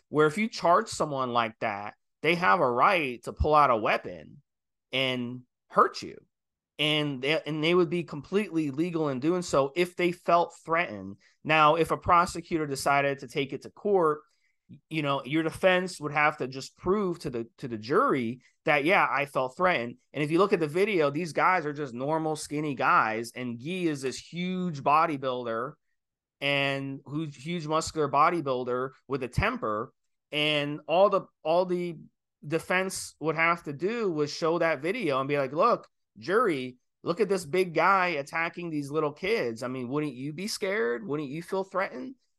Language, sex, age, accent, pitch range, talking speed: English, male, 30-49, American, 130-170 Hz, 185 wpm